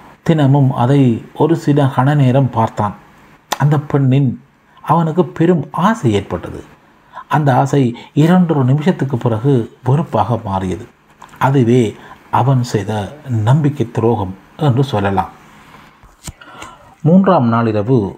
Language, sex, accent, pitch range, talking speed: Tamil, male, native, 110-145 Hz, 90 wpm